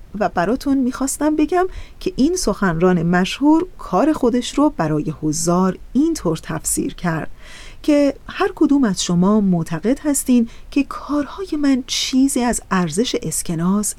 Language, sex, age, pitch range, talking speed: Persian, female, 40-59, 190-265 Hz, 130 wpm